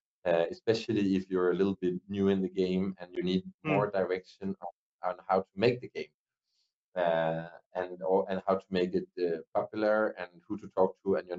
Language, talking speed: English, 205 wpm